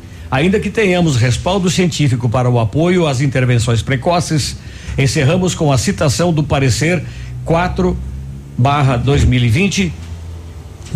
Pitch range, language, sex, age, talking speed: 120-165 Hz, Portuguese, male, 60-79, 100 wpm